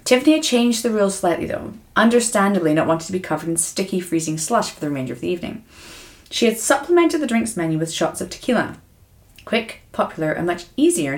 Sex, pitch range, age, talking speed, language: female, 165-240 Hz, 30-49, 205 wpm, English